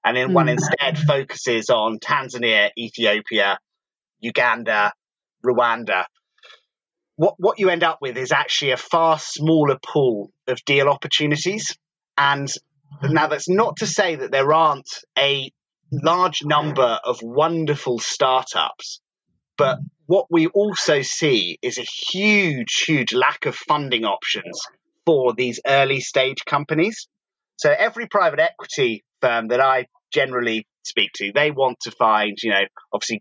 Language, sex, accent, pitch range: English, male, British, 125-165 Hz